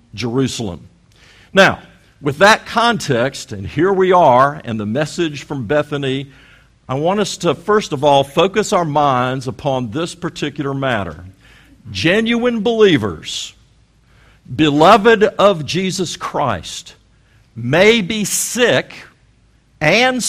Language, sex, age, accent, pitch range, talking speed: English, male, 50-69, American, 120-180 Hz, 110 wpm